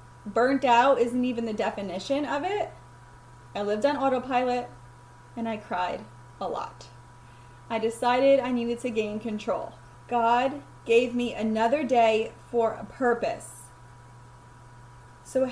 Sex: female